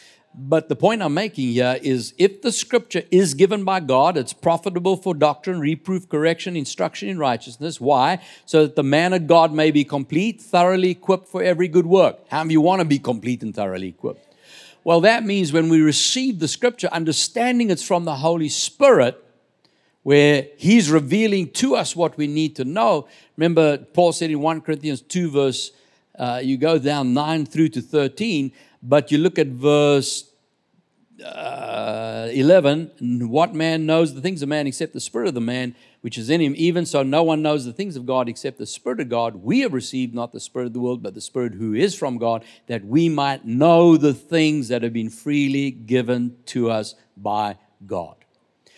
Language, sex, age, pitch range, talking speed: English, male, 50-69, 130-175 Hz, 195 wpm